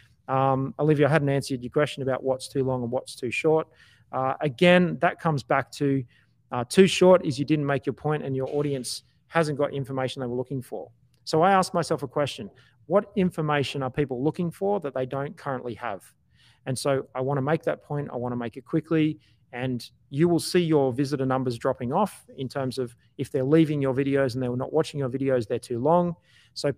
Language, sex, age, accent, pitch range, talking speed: English, male, 30-49, Australian, 130-155 Hz, 220 wpm